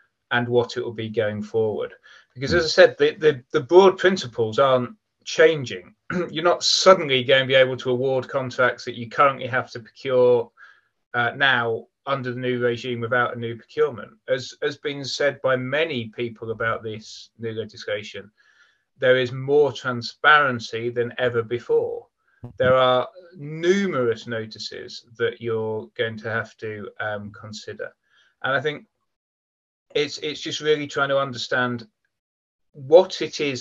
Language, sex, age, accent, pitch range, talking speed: English, male, 30-49, British, 120-160 Hz, 155 wpm